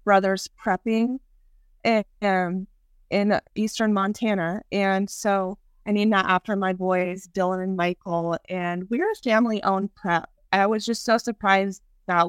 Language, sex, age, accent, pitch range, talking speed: English, female, 20-39, American, 180-210 Hz, 135 wpm